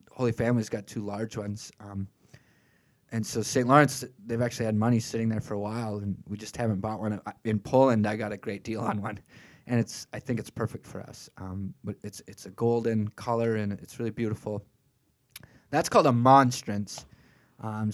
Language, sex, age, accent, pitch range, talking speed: English, male, 20-39, American, 105-130 Hz, 190 wpm